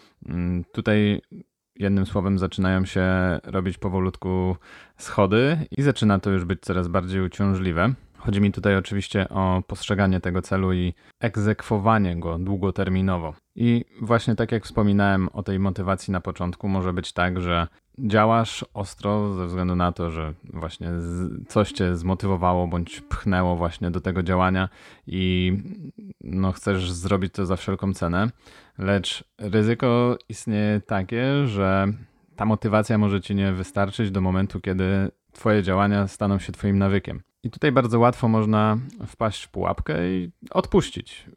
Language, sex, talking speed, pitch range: Polish, male, 140 wpm, 95-105 Hz